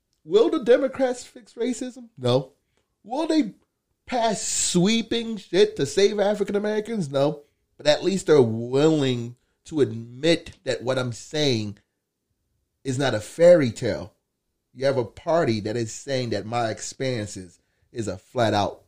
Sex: male